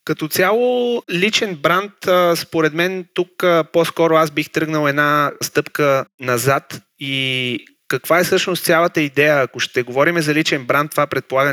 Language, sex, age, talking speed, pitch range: Bulgarian, male, 30-49, 145 wpm, 130-160 Hz